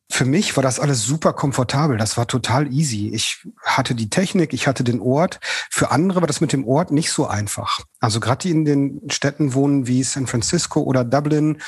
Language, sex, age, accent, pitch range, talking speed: German, male, 40-59, German, 125-155 Hz, 210 wpm